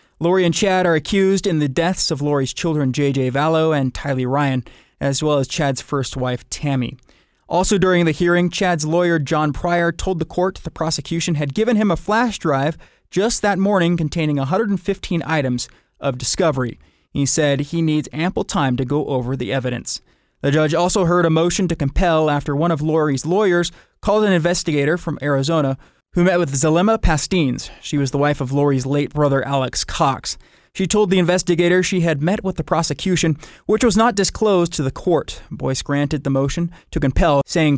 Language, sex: English, male